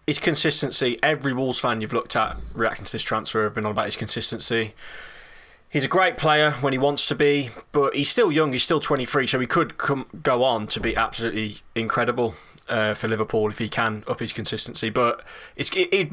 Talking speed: 205 wpm